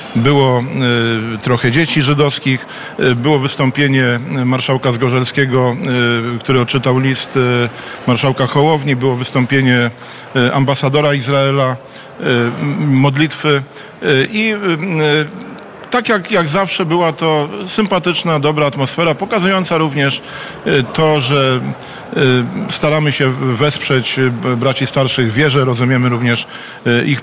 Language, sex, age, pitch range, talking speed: Polish, male, 40-59, 130-185 Hz, 90 wpm